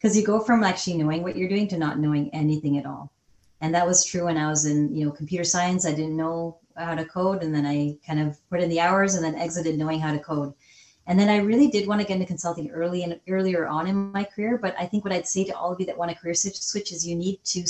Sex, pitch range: female, 155-200 Hz